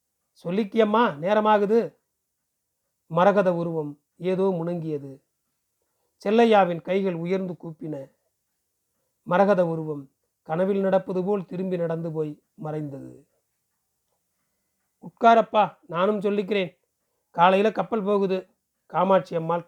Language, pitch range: Tamil, 170-215 Hz